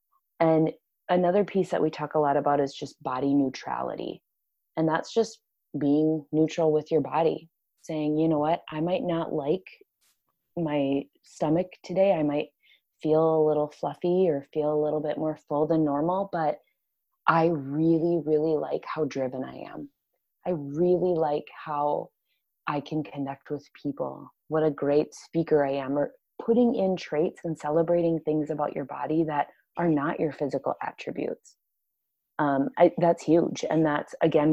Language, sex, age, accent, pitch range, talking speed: English, female, 20-39, American, 145-170 Hz, 160 wpm